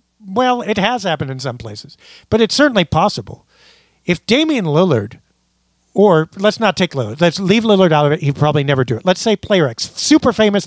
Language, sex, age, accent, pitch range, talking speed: English, male, 50-69, American, 135-190 Hz, 200 wpm